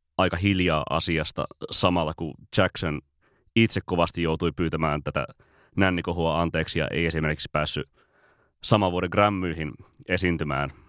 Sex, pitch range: male, 80-100 Hz